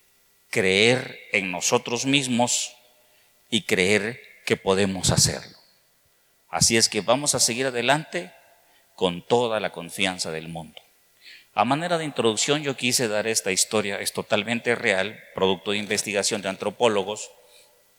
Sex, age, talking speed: male, 50-69, 130 wpm